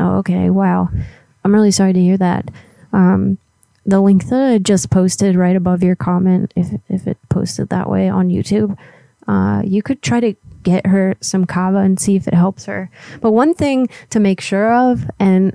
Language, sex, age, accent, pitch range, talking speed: English, female, 20-39, American, 180-200 Hz, 195 wpm